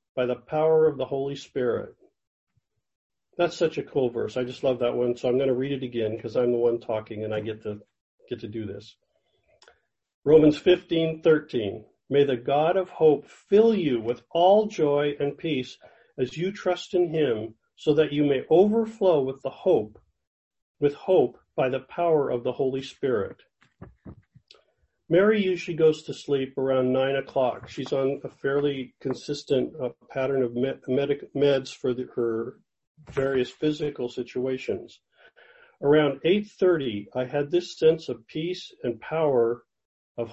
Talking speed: 160 wpm